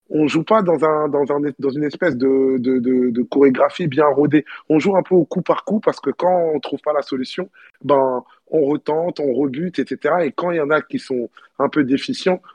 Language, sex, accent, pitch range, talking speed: French, male, French, 130-165 Hz, 240 wpm